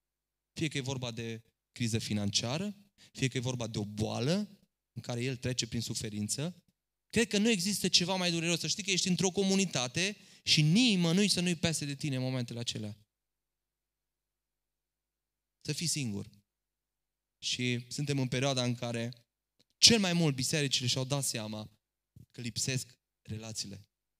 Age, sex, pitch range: 20-39, male, 120-175 Hz